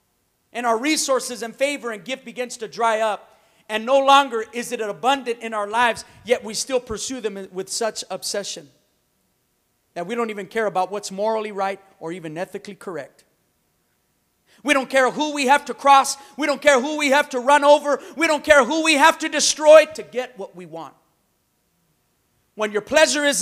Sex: male